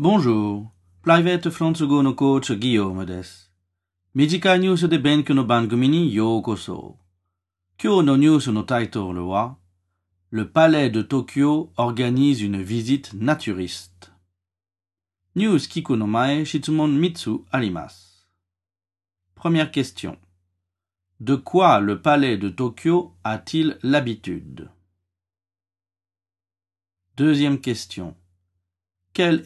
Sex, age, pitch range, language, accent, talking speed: male, 50-69, 90-140 Hz, French, French, 100 wpm